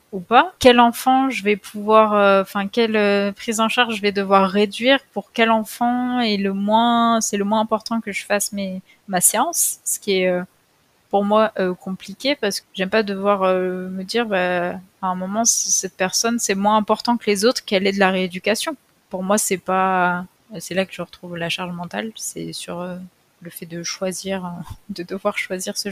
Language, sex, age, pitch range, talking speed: French, female, 20-39, 180-215 Hz, 215 wpm